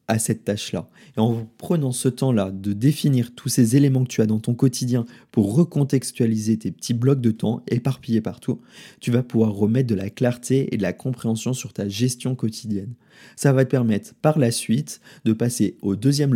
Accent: French